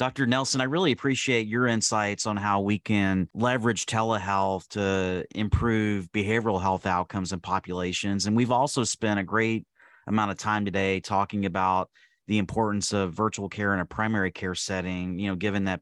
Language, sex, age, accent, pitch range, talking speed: English, male, 30-49, American, 95-110 Hz, 175 wpm